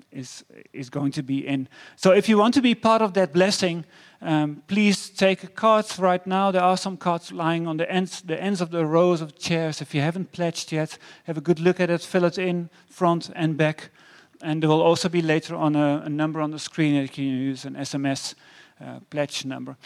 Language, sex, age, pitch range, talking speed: English, male, 40-59, 150-185 Hz, 235 wpm